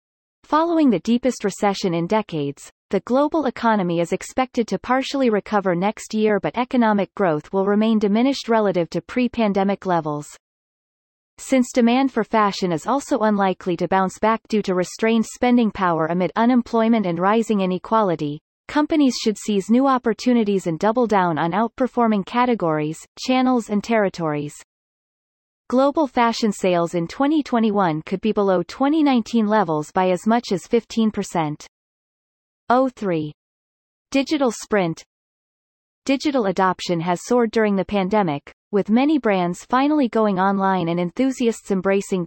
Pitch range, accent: 185-240 Hz, American